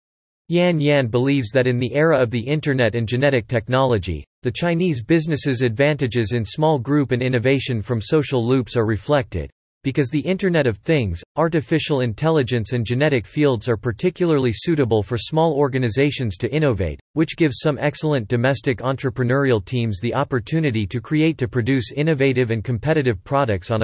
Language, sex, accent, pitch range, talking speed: English, male, American, 115-150 Hz, 160 wpm